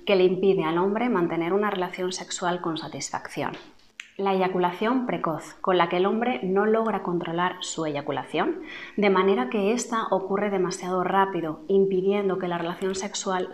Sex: female